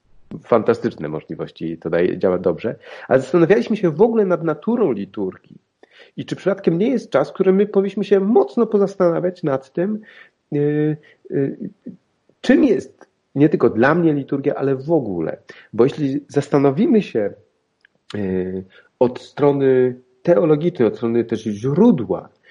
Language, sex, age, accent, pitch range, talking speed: Polish, male, 40-59, native, 125-185 Hz, 140 wpm